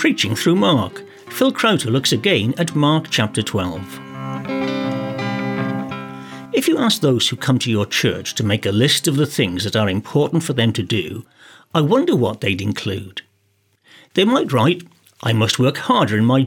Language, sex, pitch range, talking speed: English, male, 105-160 Hz, 175 wpm